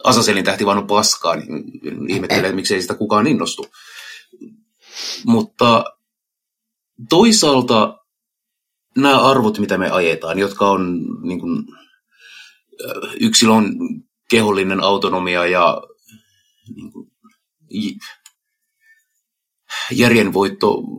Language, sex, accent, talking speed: Finnish, male, native, 75 wpm